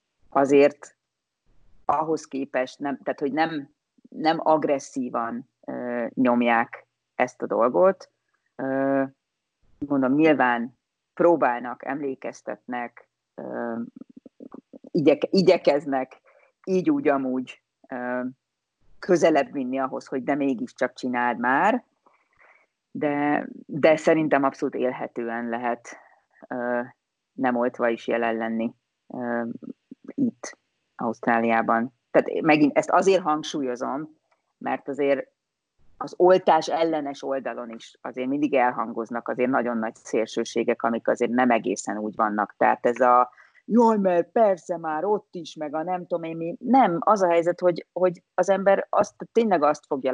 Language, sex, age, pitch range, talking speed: Hungarian, female, 40-59, 125-180 Hz, 120 wpm